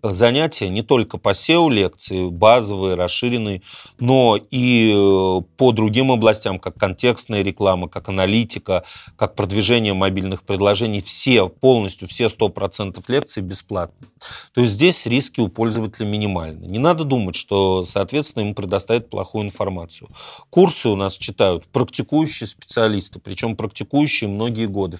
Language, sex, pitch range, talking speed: Russian, male, 95-120 Hz, 125 wpm